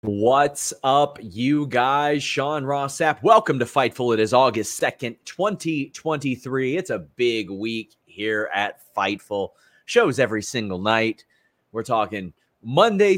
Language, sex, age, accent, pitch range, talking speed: English, male, 30-49, American, 115-155 Hz, 125 wpm